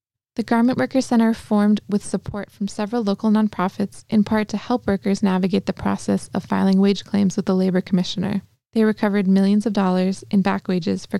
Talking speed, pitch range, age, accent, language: 195 wpm, 195-225 Hz, 20-39, American, English